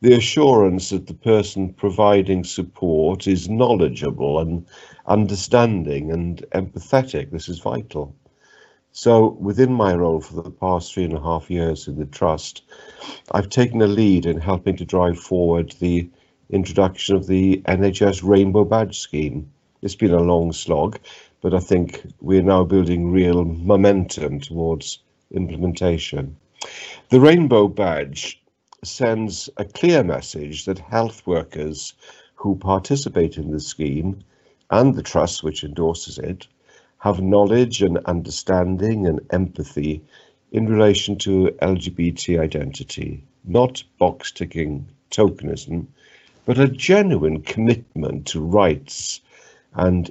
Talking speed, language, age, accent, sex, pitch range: 125 wpm, English, 50-69, British, male, 85-105 Hz